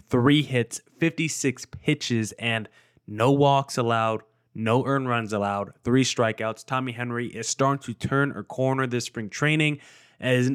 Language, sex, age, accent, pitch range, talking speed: English, male, 20-39, American, 120-140 Hz, 150 wpm